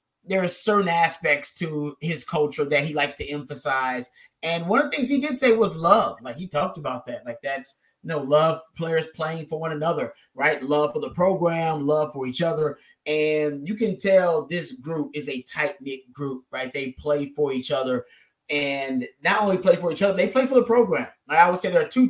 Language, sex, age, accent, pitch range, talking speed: English, male, 30-49, American, 150-195 Hz, 225 wpm